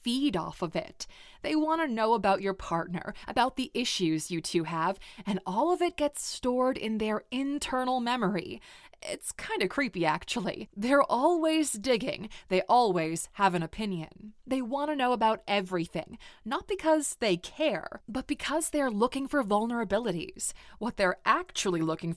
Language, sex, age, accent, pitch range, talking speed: English, female, 20-39, American, 180-265 Hz, 160 wpm